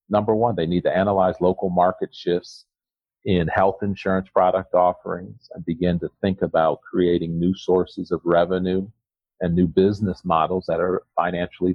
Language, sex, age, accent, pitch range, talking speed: English, male, 40-59, American, 85-100 Hz, 160 wpm